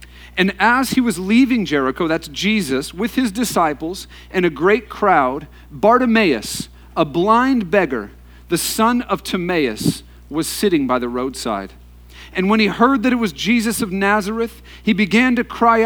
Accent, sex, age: American, male, 40-59